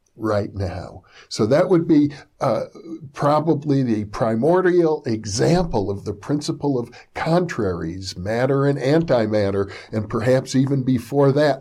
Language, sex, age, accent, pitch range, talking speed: English, male, 60-79, American, 110-155 Hz, 125 wpm